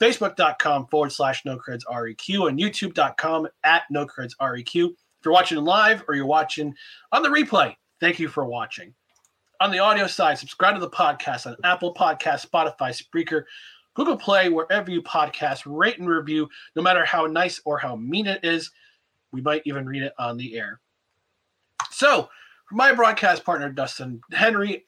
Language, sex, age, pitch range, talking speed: English, male, 30-49, 145-195 Hz, 170 wpm